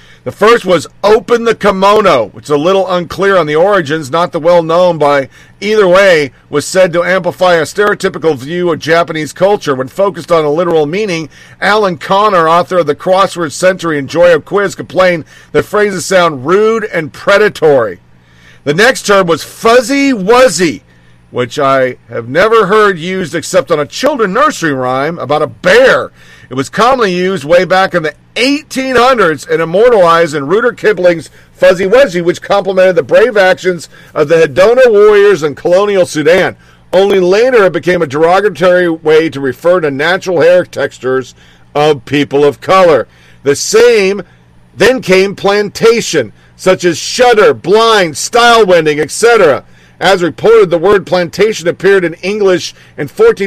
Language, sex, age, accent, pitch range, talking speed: English, male, 50-69, American, 160-205 Hz, 155 wpm